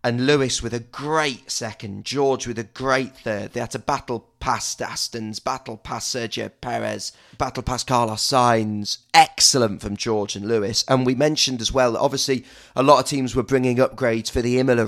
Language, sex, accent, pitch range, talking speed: English, male, British, 110-130 Hz, 190 wpm